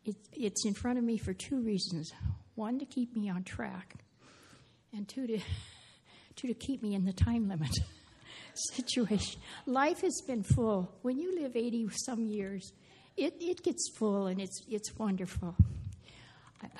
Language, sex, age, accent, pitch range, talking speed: English, female, 60-79, American, 185-230 Hz, 155 wpm